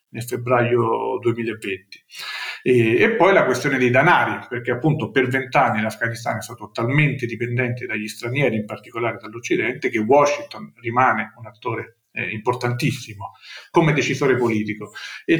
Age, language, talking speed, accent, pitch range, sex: 40-59, Italian, 135 wpm, native, 120-155 Hz, male